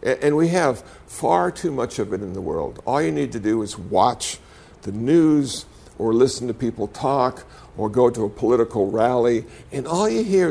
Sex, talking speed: male, 200 wpm